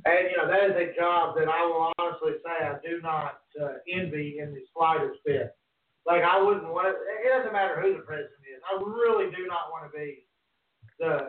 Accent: American